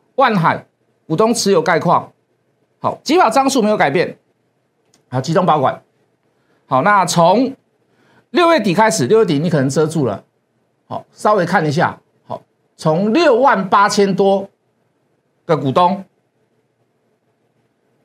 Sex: male